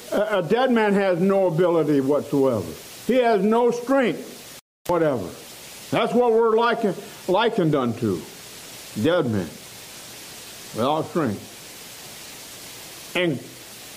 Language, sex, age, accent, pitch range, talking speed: English, male, 60-79, American, 150-225 Hz, 100 wpm